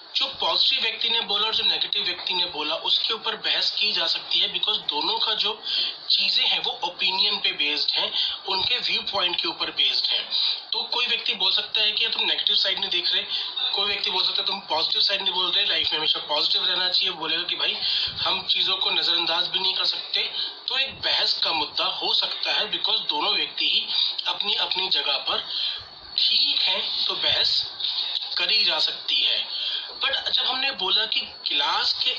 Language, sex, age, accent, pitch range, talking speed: Hindi, male, 30-49, native, 180-225 Hz, 165 wpm